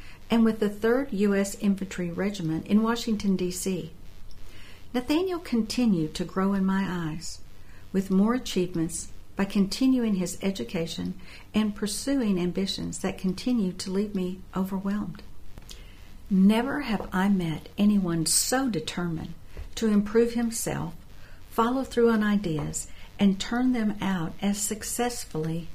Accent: American